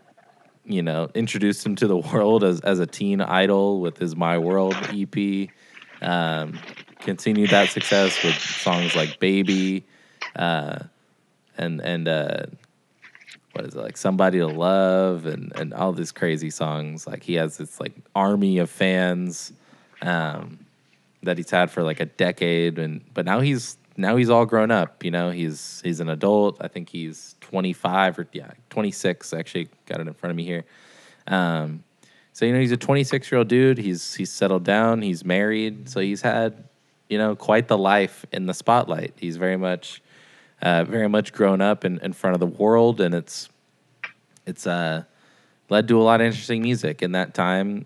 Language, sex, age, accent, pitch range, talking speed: English, male, 20-39, American, 85-105 Hz, 180 wpm